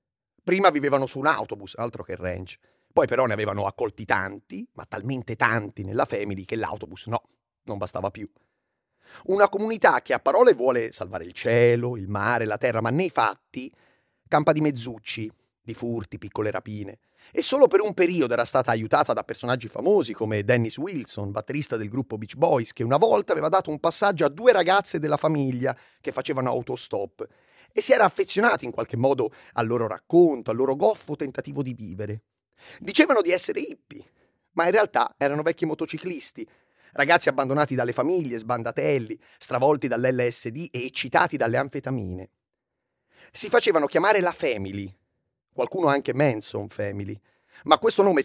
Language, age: Italian, 30-49